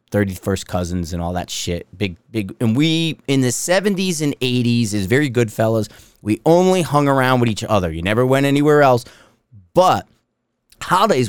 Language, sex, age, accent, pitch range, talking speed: English, male, 30-49, American, 105-135 Hz, 175 wpm